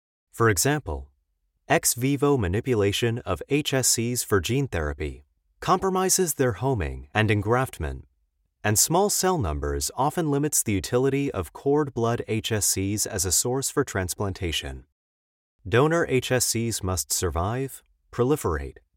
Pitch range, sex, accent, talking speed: 90-135 Hz, male, American, 115 wpm